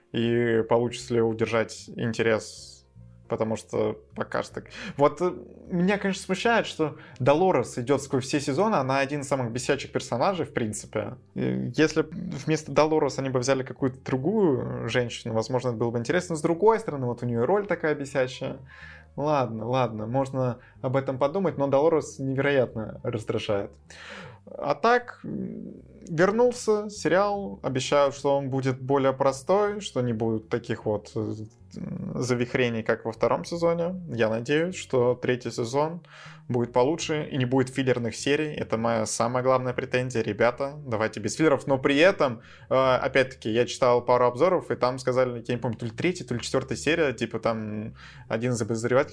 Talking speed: 155 wpm